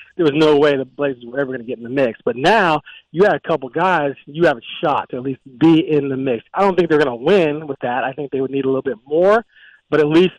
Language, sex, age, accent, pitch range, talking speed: English, male, 30-49, American, 135-170 Hz, 305 wpm